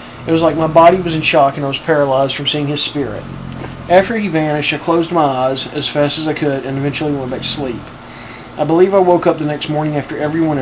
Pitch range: 130-155 Hz